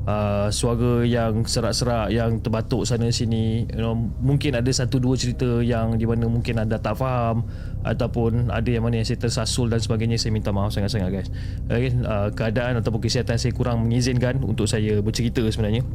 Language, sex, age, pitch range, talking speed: Malay, male, 20-39, 105-125 Hz, 180 wpm